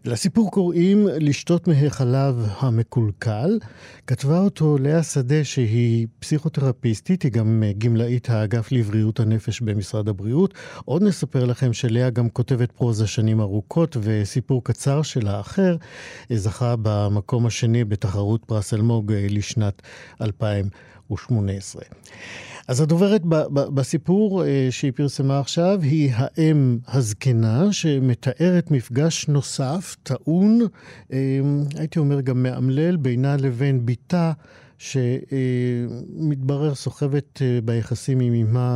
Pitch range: 115-145 Hz